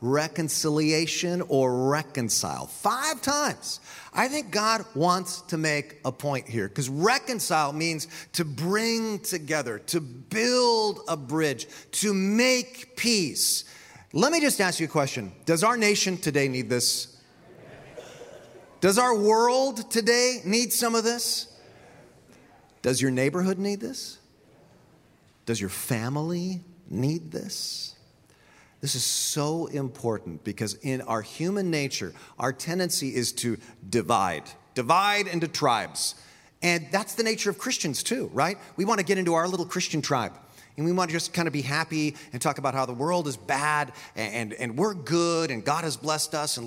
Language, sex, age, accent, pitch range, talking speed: English, male, 40-59, American, 135-190 Hz, 155 wpm